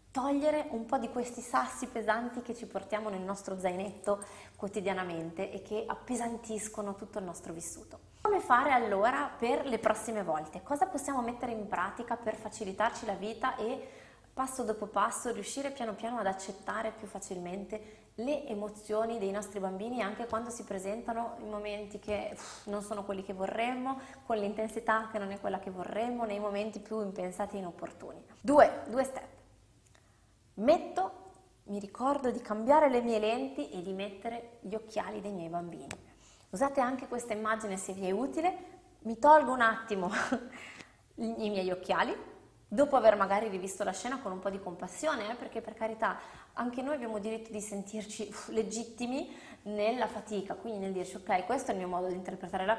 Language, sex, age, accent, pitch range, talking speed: Italian, female, 20-39, native, 195-240 Hz, 170 wpm